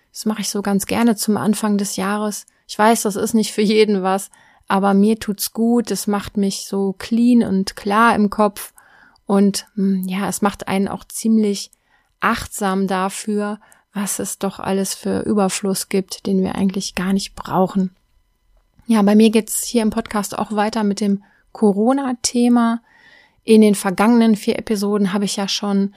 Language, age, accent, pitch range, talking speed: German, 20-39, German, 195-220 Hz, 170 wpm